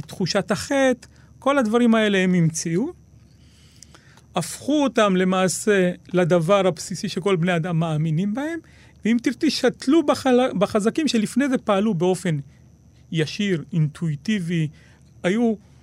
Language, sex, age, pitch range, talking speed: Hebrew, male, 40-59, 170-225 Hz, 115 wpm